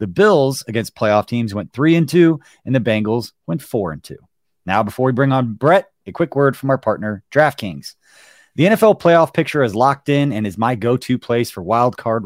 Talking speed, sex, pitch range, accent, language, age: 215 wpm, male, 110-145 Hz, American, English, 30-49